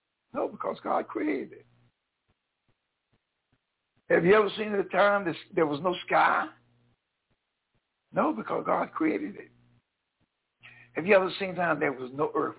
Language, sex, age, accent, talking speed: English, male, 60-79, American, 150 wpm